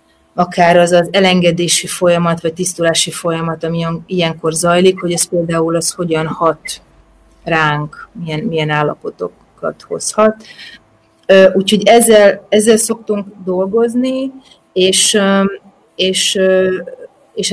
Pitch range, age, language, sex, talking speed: 170-195 Hz, 30-49, Hungarian, female, 100 wpm